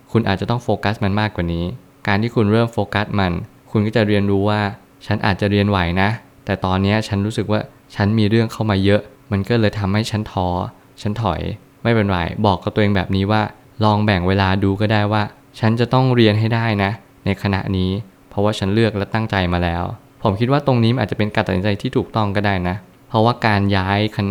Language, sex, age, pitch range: Thai, male, 20-39, 100-115 Hz